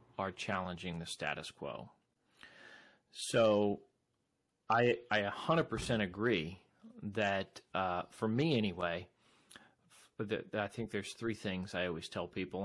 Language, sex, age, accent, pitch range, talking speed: English, male, 30-49, American, 100-120 Hz, 125 wpm